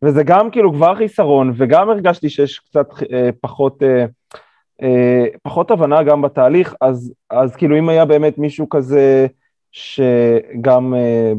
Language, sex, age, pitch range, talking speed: Hebrew, male, 20-39, 115-145 Hz, 140 wpm